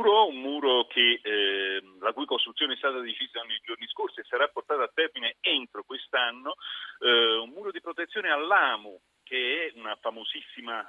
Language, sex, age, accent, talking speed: Italian, male, 40-59, native, 170 wpm